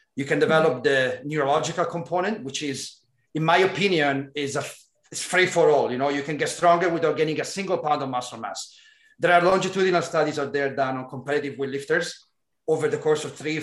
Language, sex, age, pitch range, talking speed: Italian, male, 30-49, 140-175 Hz, 205 wpm